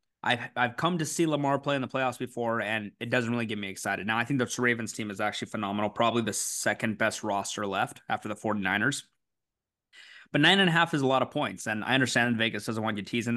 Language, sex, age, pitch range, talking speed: English, male, 20-39, 110-140 Hz, 240 wpm